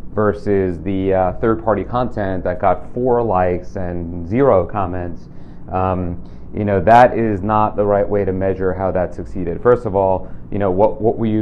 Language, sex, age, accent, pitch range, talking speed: English, male, 30-49, American, 90-100 Hz, 185 wpm